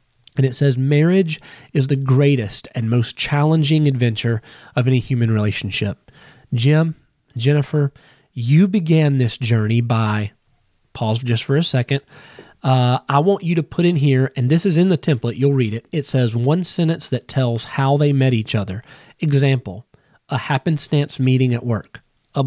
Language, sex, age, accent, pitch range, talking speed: English, male, 30-49, American, 120-150 Hz, 165 wpm